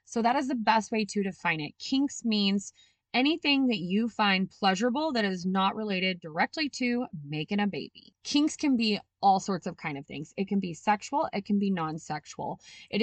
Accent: American